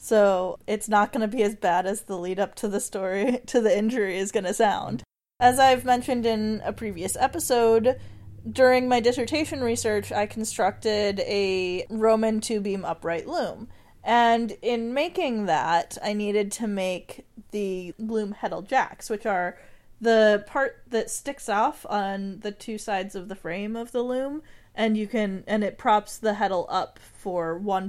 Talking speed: 175 wpm